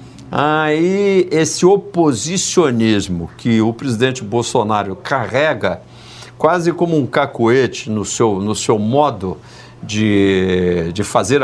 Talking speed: 115 wpm